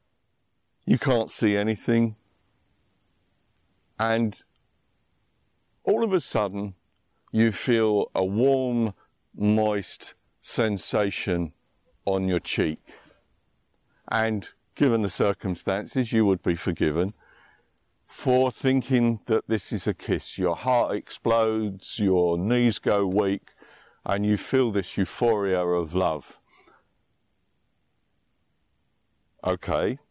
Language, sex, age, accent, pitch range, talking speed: English, male, 50-69, British, 90-115 Hz, 95 wpm